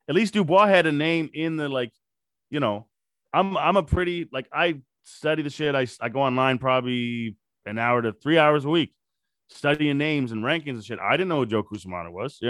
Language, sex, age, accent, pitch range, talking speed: English, male, 30-49, American, 125-155 Hz, 225 wpm